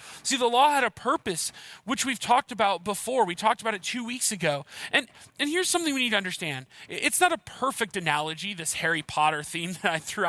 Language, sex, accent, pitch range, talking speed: English, male, American, 175-245 Hz, 220 wpm